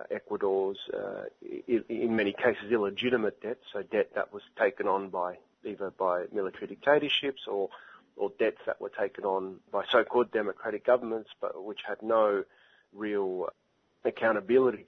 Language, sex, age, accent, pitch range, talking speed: English, male, 30-49, Australian, 100-120 Hz, 140 wpm